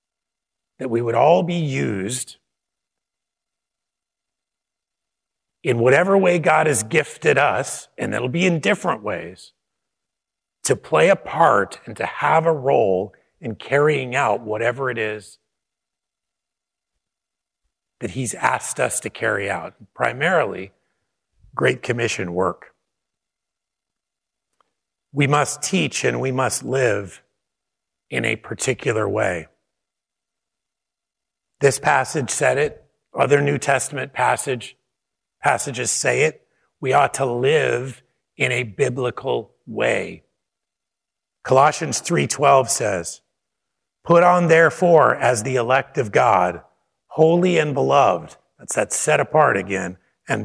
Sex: male